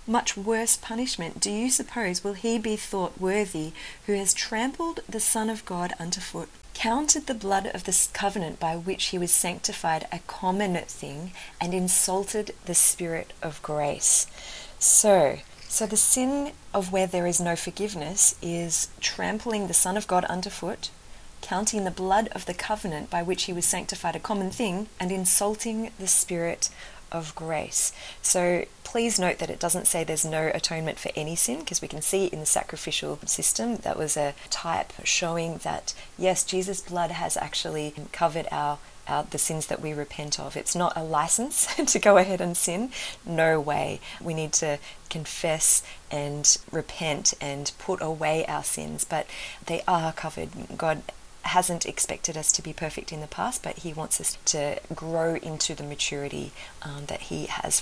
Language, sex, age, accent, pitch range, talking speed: English, female, 30-49, Australian, 160-205 Hz, 175 wpm